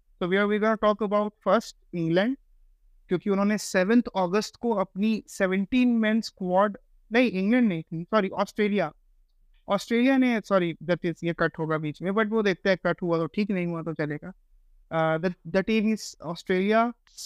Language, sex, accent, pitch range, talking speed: Hindi, male, native, 180-225 Hz, 145 wpm